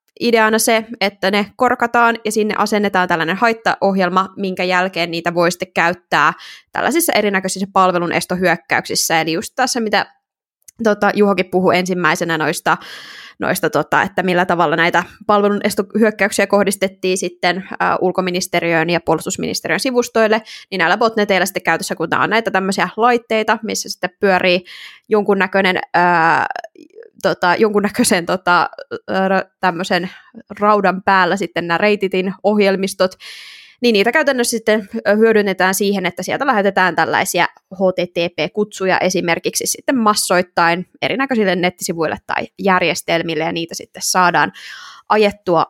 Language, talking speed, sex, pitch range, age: Finnish, 115 wpm, female, 180-215 Hz, 20-39